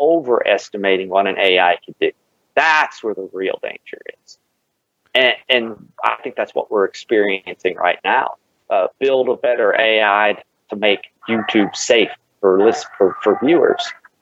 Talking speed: 150 wpm